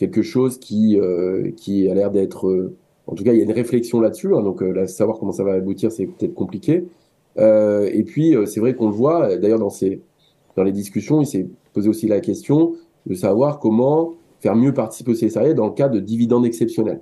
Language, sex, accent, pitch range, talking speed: French, male, French, 100-125 Hz, 230 wpm